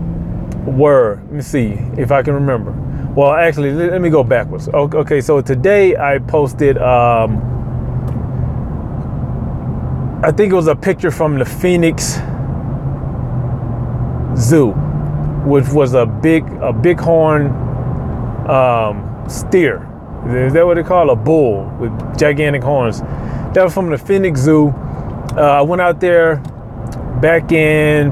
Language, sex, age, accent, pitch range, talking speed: English, male, 30-49, American, 120-150 Hz, 135 wpm